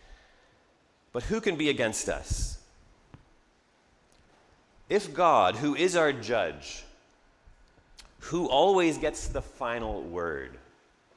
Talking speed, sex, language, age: 95 wpm, male, English, 30-49